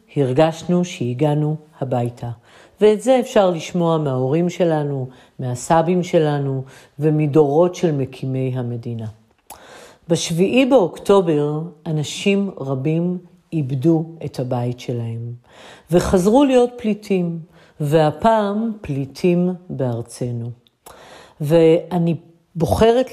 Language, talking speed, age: Hebrew, 80 wpm, 50-69